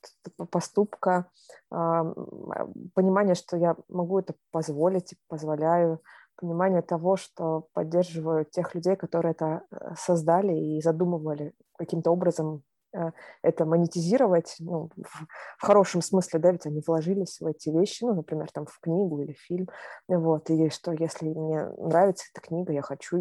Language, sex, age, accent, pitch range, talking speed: Russian, female, 20-39, native, 165-190 Hz, 130 wpm